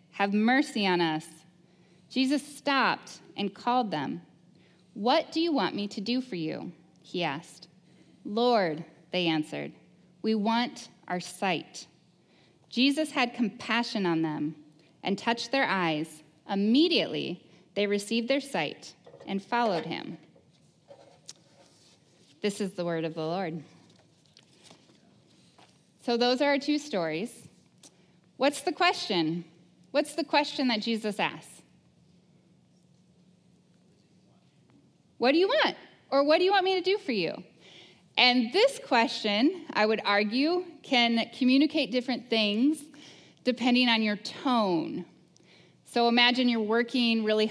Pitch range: 180-250 Hz